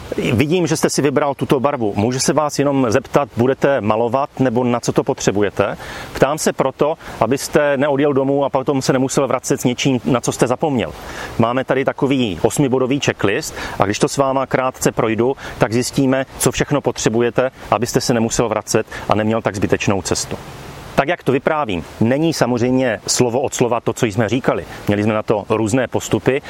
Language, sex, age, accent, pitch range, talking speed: Czech, male, 30-49, native, 120-150 Hz, 185 wpm